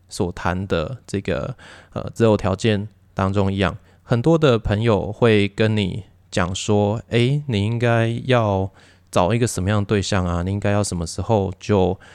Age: 20-39